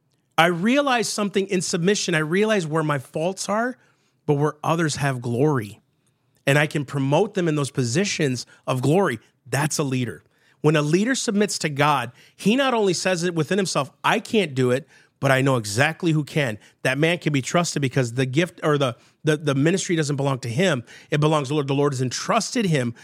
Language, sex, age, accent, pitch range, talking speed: English, male, 40-59, American, 135-180 Hz, 205 wpm